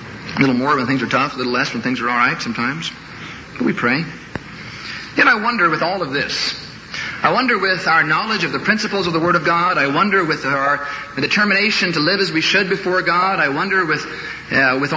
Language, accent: English, American